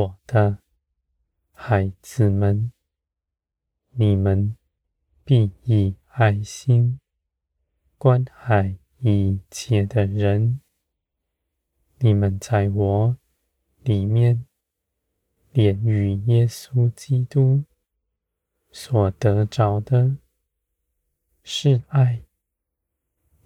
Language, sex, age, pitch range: Chinese, male, 20-39, 75-115 Hz